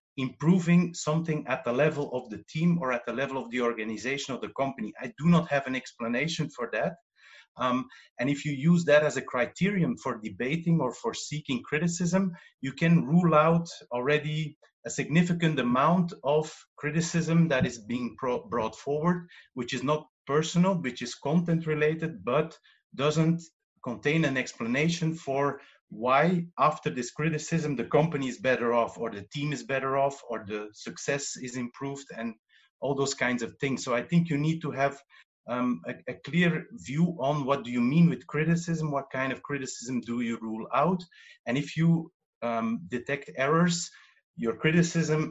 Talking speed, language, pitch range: 175 wpm, English, 125-160 Hz